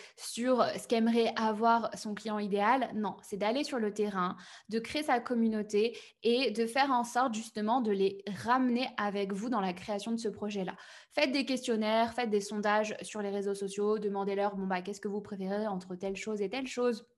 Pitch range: 210-245 Hz